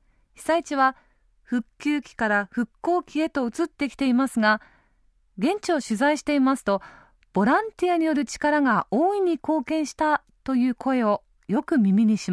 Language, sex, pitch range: Japanese, female, 215-300 Hz